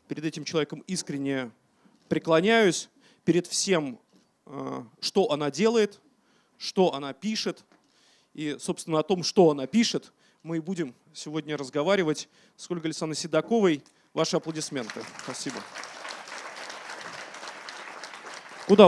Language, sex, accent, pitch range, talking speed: Russian, male, native, 145-190 Hz, 105 wpm